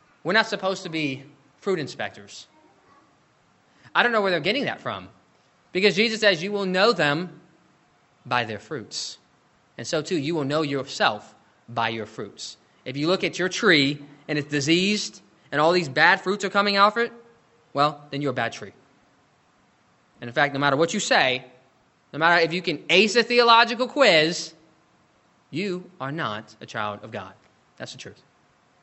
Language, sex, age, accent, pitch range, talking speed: English, male, 20-39, American, 135-190 Hz, 180 wpm